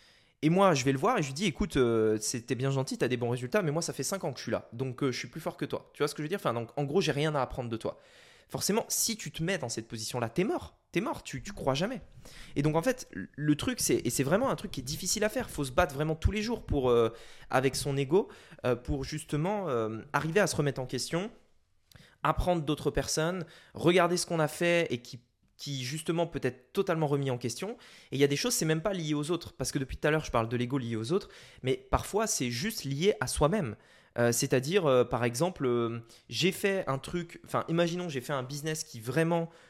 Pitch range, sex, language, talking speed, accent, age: 125-175 Hz, male, French, 275 wpm, French, 20-39